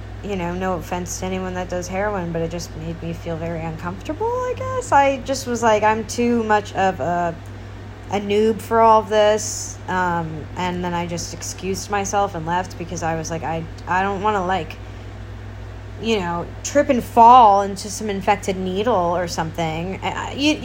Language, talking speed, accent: English, 190 wpm, American